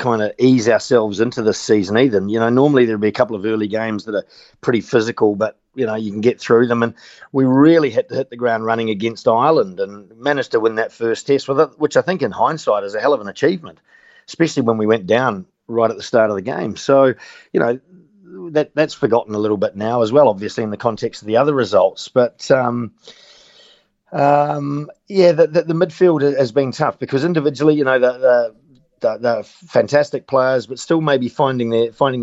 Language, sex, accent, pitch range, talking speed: English, male, Australian, 115-150 Hz, 225 wpm